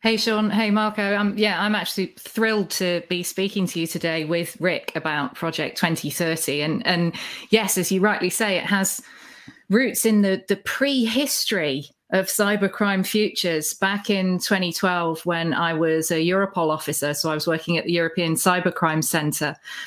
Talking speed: 165 wpm